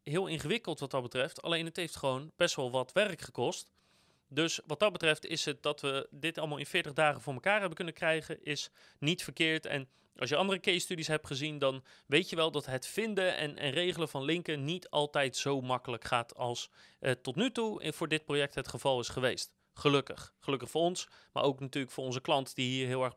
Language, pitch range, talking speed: Dutch, 135-185 Hz, 225 wpm